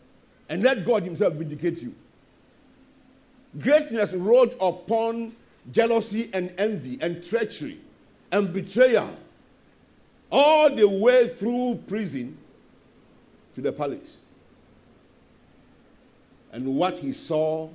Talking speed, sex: 95 wpm, male